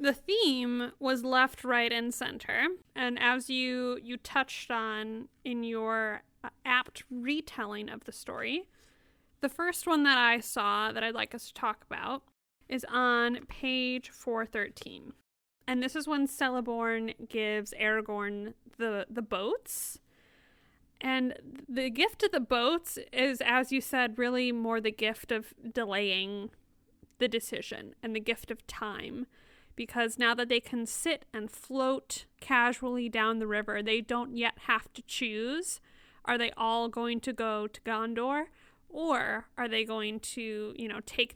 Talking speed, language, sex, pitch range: 150 wpm, English, female, 225-260 Hz